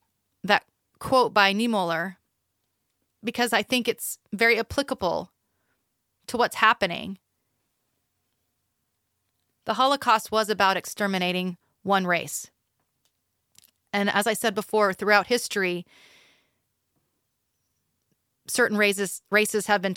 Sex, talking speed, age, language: female, 95 wpm, 30-49, English